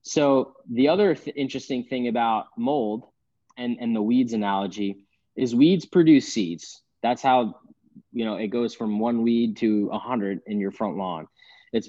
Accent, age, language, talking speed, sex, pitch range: American, 20-39, English, 165 wpm, male, 110-130 Hz